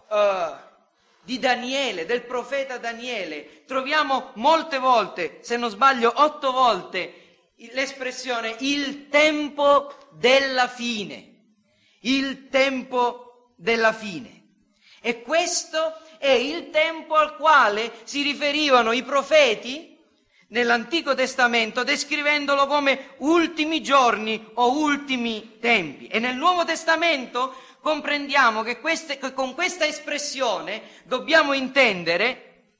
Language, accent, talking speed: Italian, native, 100 wpm